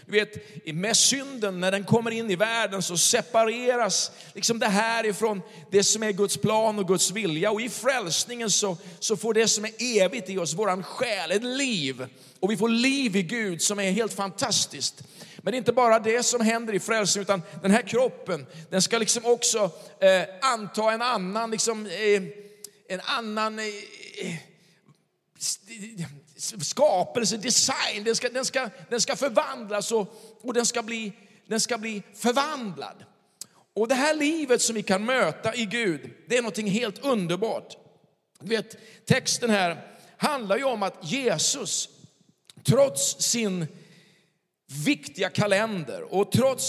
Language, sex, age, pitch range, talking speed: Swedish, male, 40-59, 190-235 Hz, 160 wpm